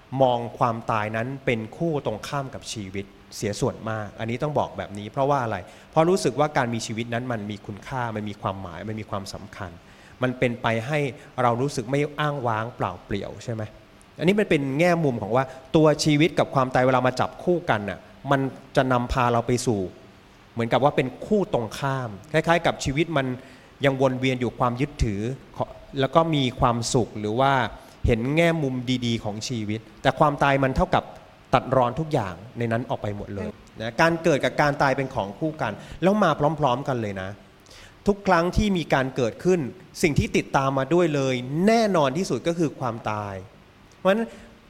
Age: 20-39